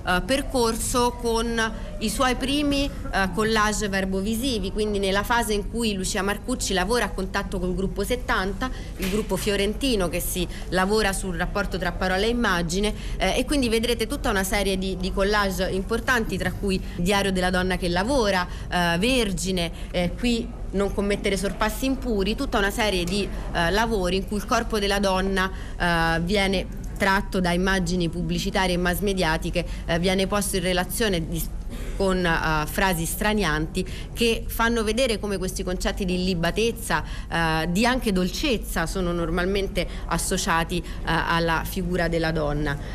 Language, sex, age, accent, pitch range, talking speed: Italian, female, 30-49, native, 185-220 Hz, 150 wpm